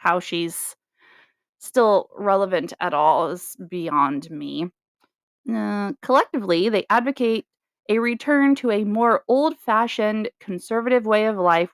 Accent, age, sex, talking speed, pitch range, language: American, 20-39, female, 120 wpm, 185-245 Hz, English